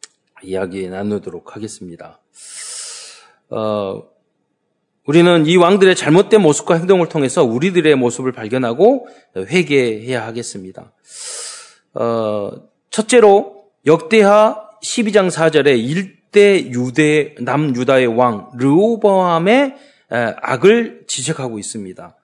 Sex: male